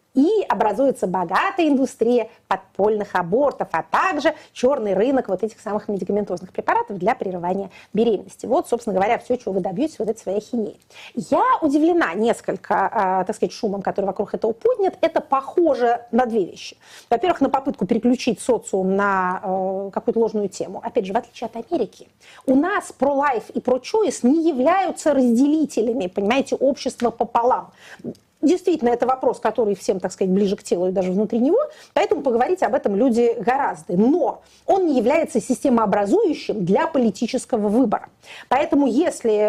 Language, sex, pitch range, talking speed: Russian, female, 210-290 Hz, 150 wpm